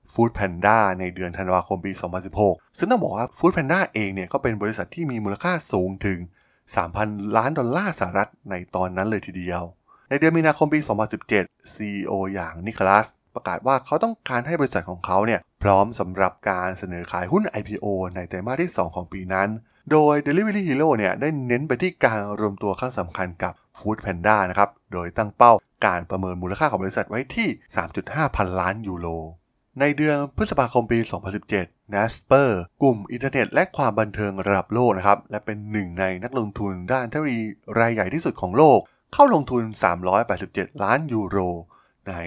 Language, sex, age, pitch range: Thai, male, 20-39, 95-125 Hz